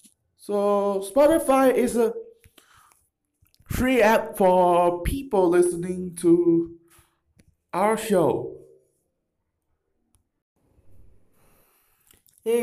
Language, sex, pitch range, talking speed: English, male, 165-245 Hz, 60 wpm